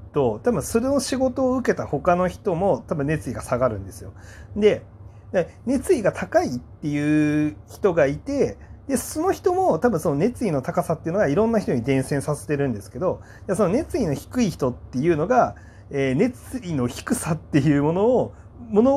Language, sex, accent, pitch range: Japanese, male, native, 110-170 Hz